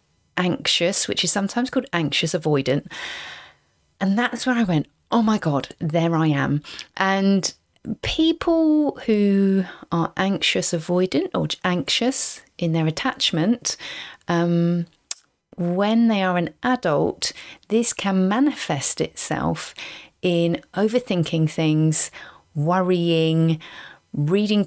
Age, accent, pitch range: 30-49, British, 165-235 Hz